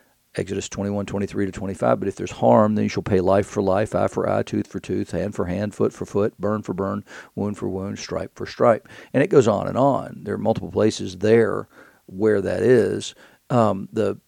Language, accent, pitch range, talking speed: English, American, 100-115 Hz, 225 wpm